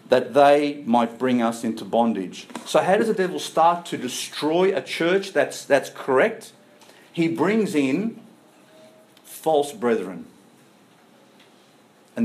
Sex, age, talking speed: male, 50-69, 125 wpm